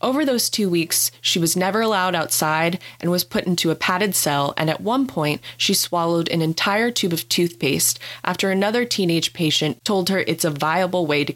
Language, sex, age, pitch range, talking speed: English, female, 20-39, 150-195 Hz, 200 wpm